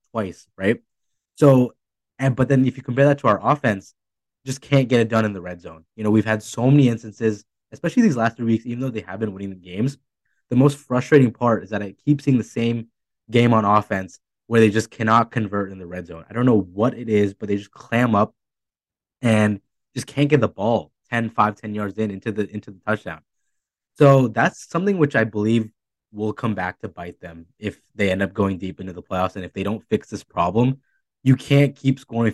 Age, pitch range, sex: 20-39, 100-125 Hz, male